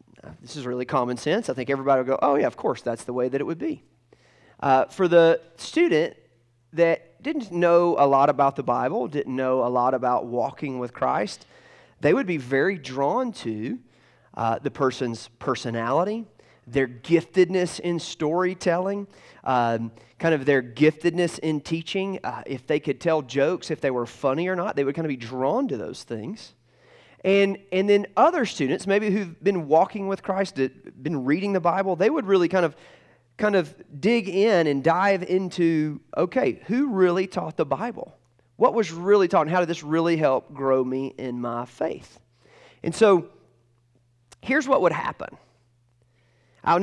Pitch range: 125-185 Hz